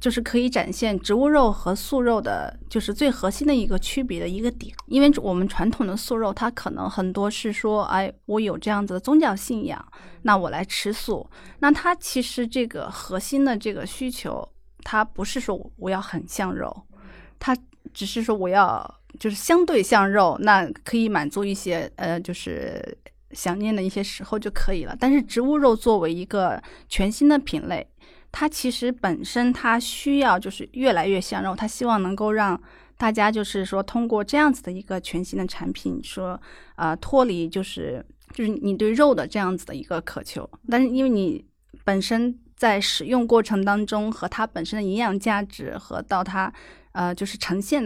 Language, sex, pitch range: Chinese, female, 195-250 Hz